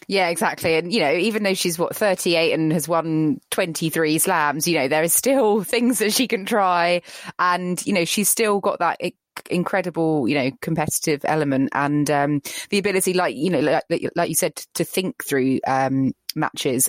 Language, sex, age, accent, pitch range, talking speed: English, female, 20-39, British, 160-215 Hz, 190 wpm